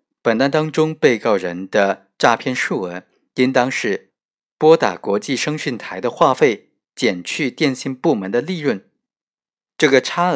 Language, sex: Chinese, male